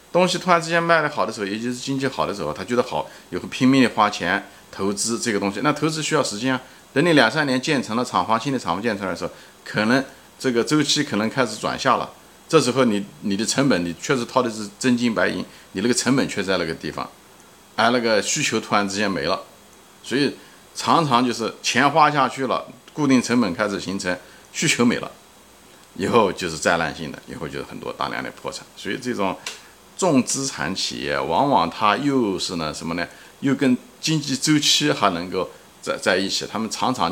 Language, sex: Chinese, male